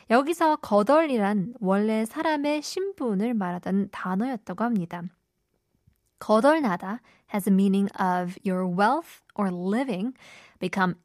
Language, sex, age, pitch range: Korean, female, 20-39, 195-265 Hz